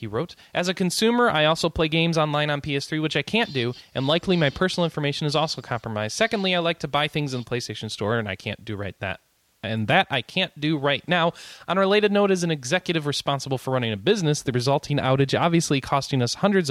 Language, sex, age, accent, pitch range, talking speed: English, male, 20-39, American, 125-170 Hz, 235 wpm